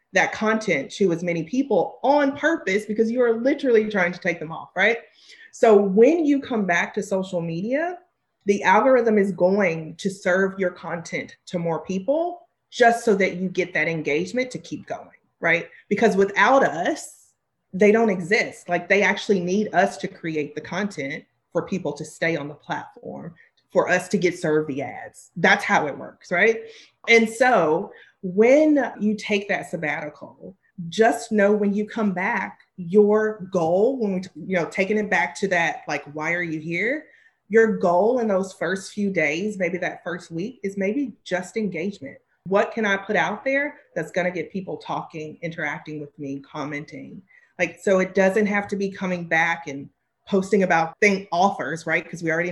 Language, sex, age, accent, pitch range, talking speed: English, female, 30-49, American, 170-220 Hz, 185 wpm